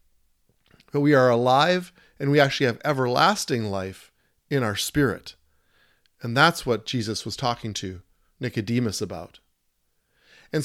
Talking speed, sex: 130 wpm, male